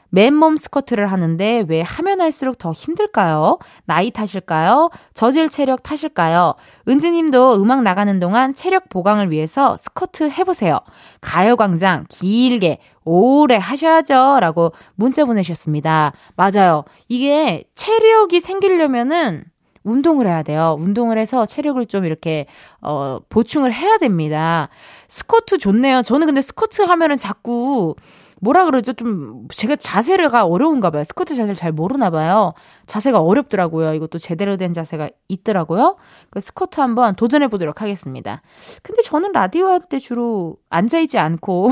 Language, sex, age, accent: Korean, female, 20-39, native